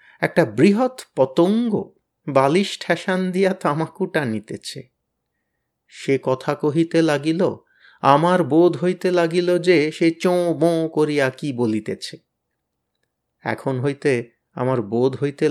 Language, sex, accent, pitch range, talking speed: Bengali, male, native, 125-165 Hz, 90 wpm